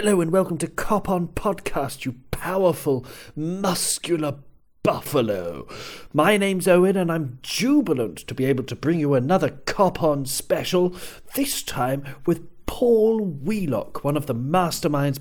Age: 40-59